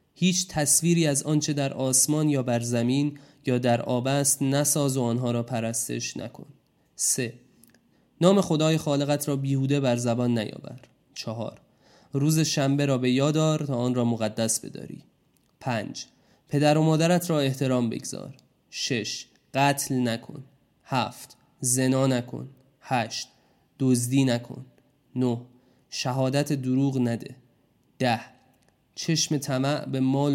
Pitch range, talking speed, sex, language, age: 125-150 Hz, 125 wpm, male, Persian, 20-39